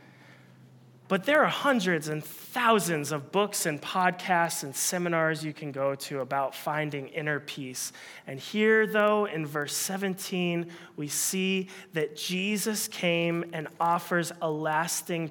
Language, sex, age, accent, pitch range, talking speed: English, male, 30-49, American, 150-185 Hz, 135 wpm